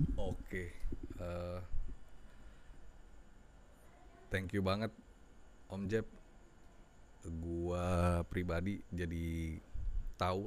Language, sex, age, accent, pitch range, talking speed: Indonesian, male, 20-39, native, 80-90 Hz, 70 wpm